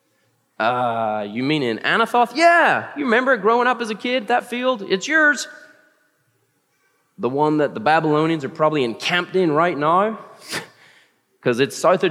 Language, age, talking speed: English, 30-49, 160 wpm